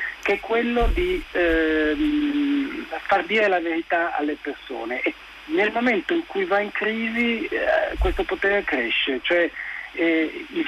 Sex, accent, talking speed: male, native, 145 wpm